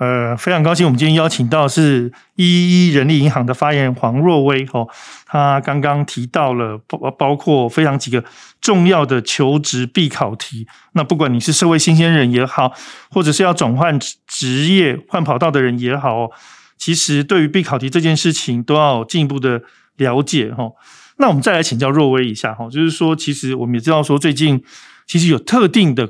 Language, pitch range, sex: Chinese, 125-160 Hz, male